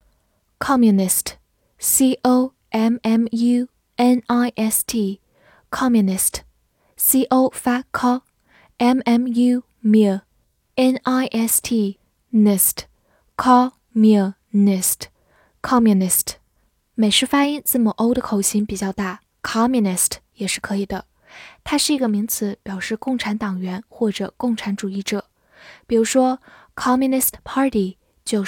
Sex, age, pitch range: female, 10-29, 205-250 Hz